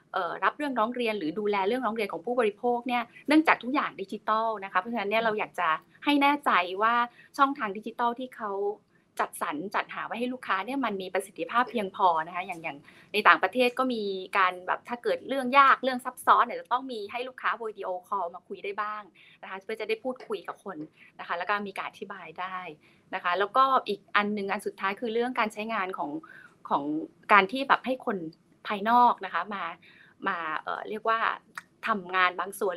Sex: female